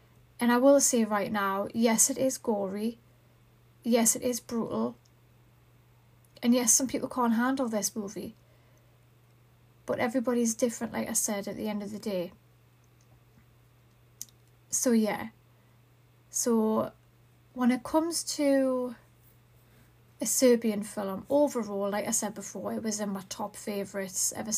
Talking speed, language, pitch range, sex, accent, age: 135 wpm, English, 155-235 Hz, female, British, 30-49